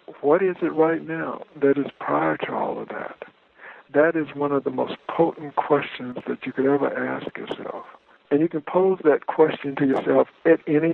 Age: 60-79